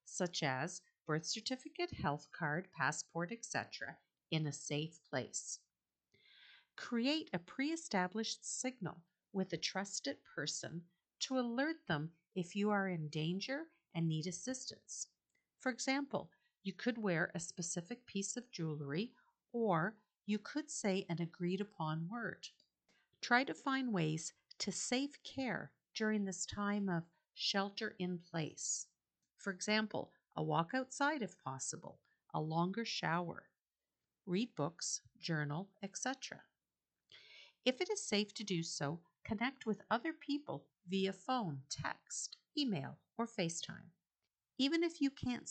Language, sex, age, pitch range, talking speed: English, female, 50-69, 170-240 Hz, 125 wpm